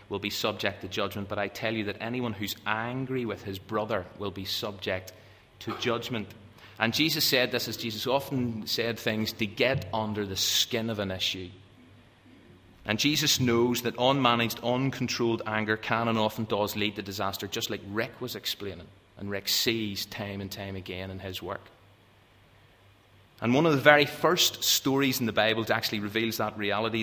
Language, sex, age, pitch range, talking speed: English, male, 30-49, 105-120 Hz, 180 wpm